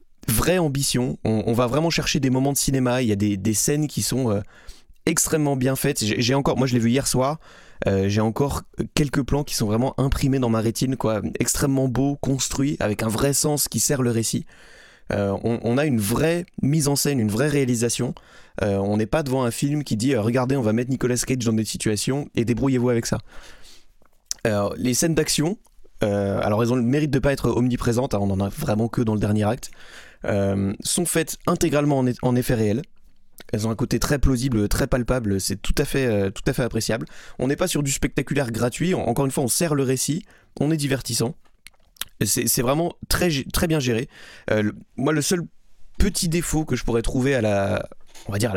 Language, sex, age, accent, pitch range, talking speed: French, male, 20-39, French, 110-140 Hz, 220 wpm